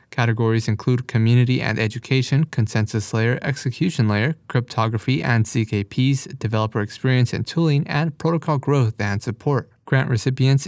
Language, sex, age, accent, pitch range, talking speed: English, male, 20-39, American, 115-140 Hz, 130 wpm